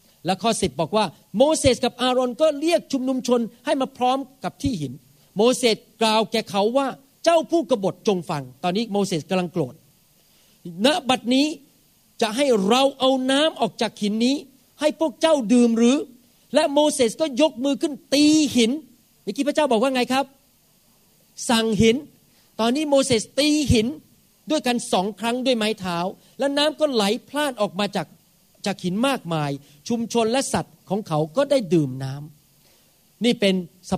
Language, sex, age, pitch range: Thai, male, 40-59, 185-265 Hz